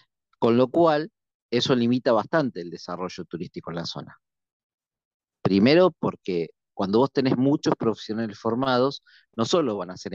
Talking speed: 150 wpm